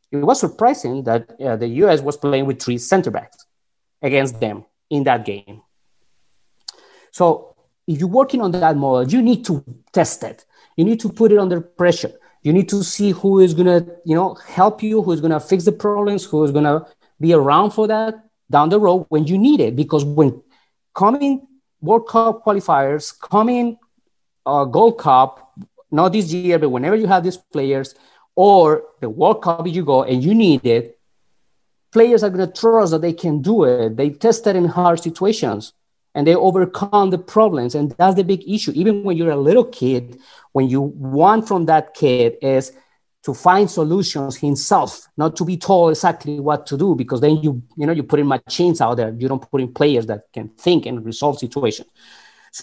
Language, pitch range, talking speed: English, 140-205 Hz, 195 wpm